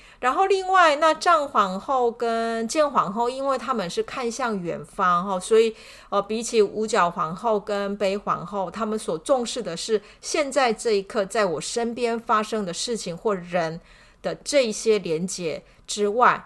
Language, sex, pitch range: Chinese, female, 185-235 Hz